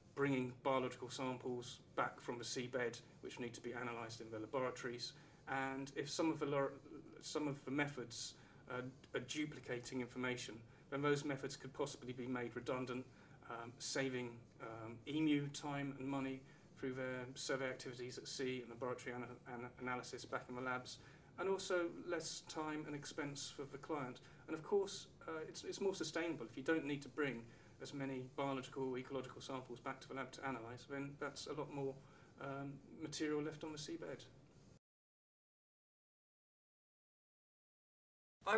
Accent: British